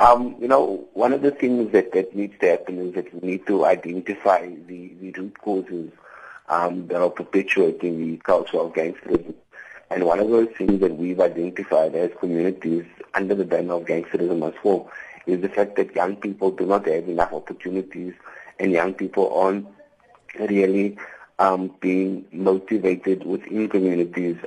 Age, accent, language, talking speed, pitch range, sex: 50-69, Indian, English, 165 wpm, 85-100 Hz, male